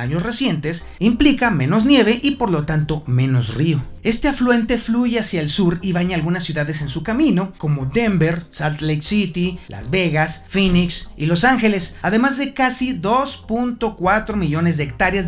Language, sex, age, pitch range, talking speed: Spanish, male, 40-59, 150-215 Hz, 165 wpm